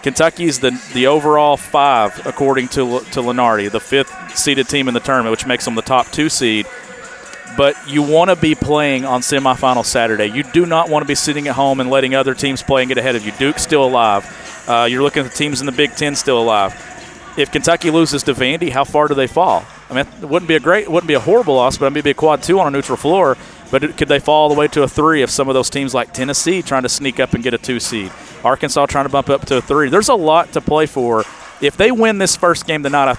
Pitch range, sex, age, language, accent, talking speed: 125-150 Hz, male, 40-59, English, American, 265 wpm